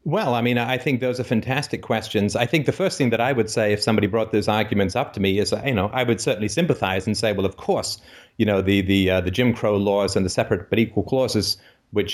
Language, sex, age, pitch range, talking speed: English, male, 30-49, 100-125 Hz, 265 wpm